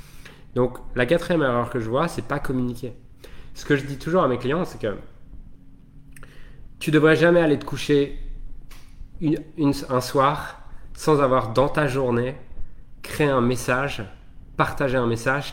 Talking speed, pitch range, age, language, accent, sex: 160 wpm, 115-145 Hz, 30-49, French, French, male